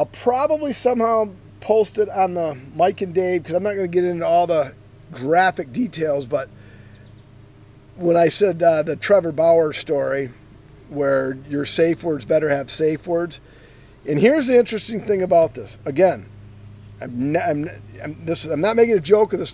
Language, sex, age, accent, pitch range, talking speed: English, male, 40-59, American, 130-190 Hz, 180 wpm